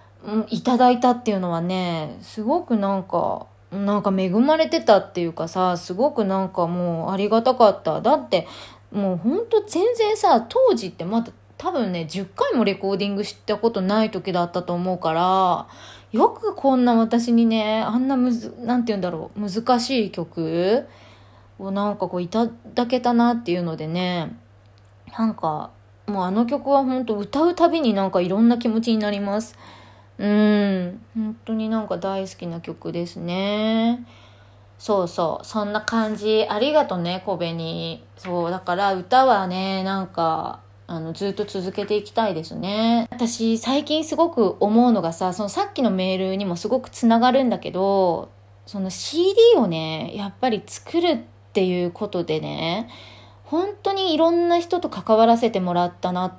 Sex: female